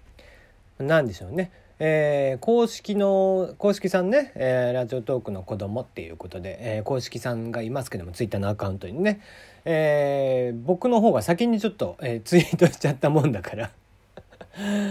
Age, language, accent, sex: 40-59, Japanese, native, male